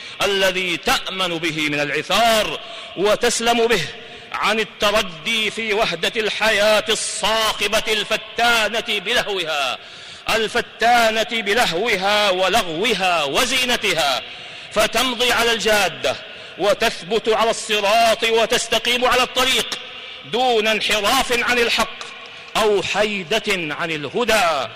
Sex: male